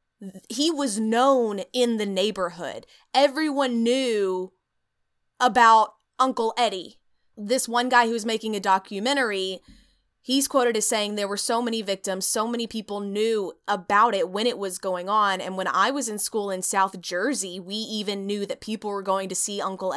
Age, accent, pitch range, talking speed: 20-39, American, 190-245 Hz, 170 wpm